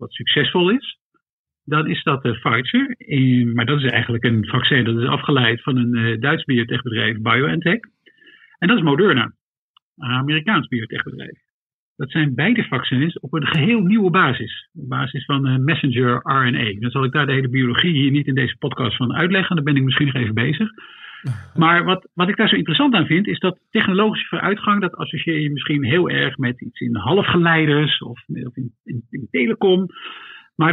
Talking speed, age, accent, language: 185 wpm, 50-69, Dutch, Dutch